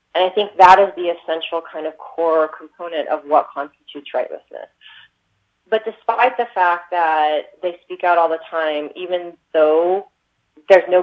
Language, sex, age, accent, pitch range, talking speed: English, female, 30-49, American, 155-185 Hz, 165 wpm